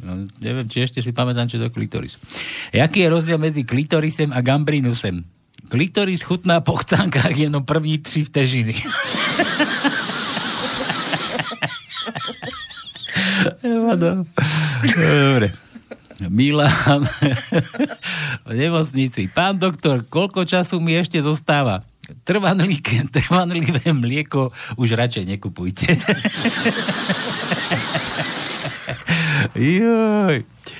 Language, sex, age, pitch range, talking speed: Slovak, male, 50-69, 115-160 Hz, 85 wpm